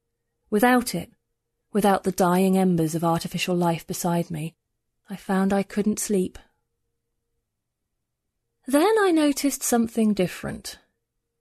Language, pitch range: English, 165-245 Hz